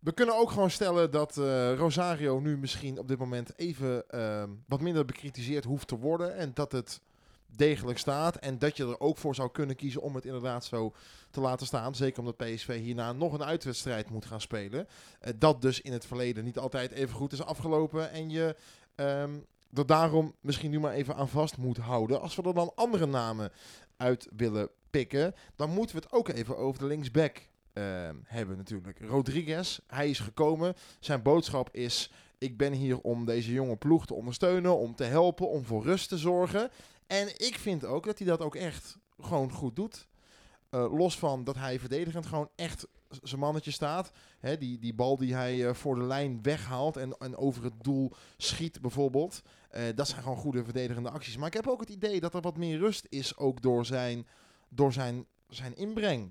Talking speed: 200 wpm